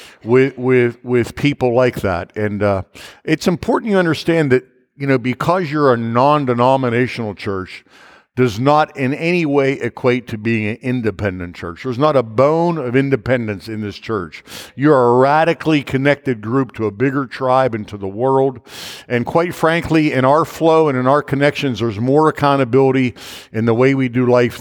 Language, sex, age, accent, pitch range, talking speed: English, male, 50-69, American, 115-150 Hz, 175 wpm